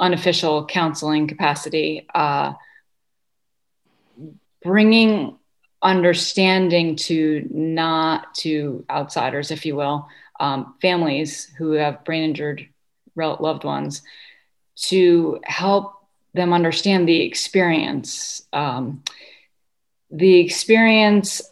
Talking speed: 85 wpm